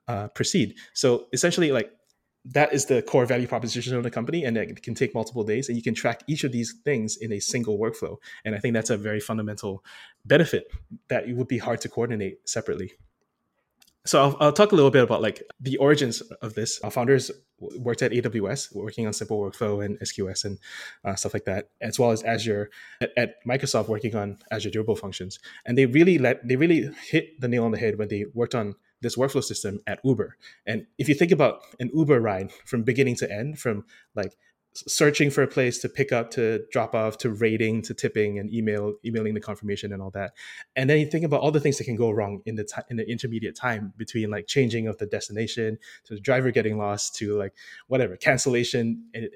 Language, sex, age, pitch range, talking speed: English, male, 20-39, 105-130 Hz, 220 wpm